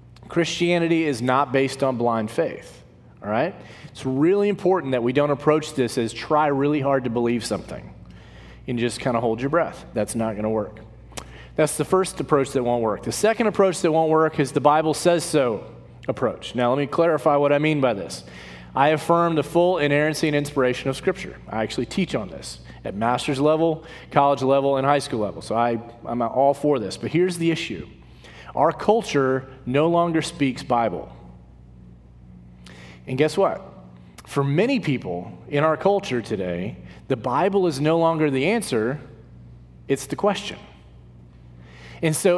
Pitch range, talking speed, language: 115-165 Hz, 175 wpm, English